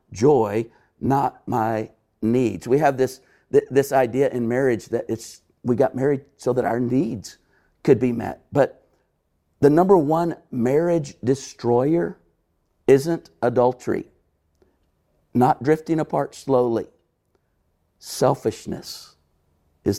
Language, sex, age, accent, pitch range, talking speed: English, male, 50-69, American, 110-135 Hz, 110 wpm